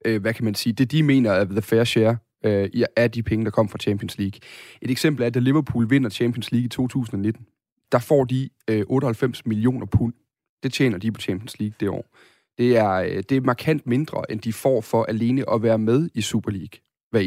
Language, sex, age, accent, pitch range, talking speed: Danish, male, 30-49, native, 110-130 Hz, 220 wpm